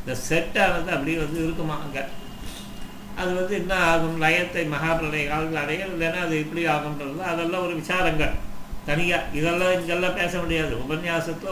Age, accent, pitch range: 60-79, native, 150-180 Hz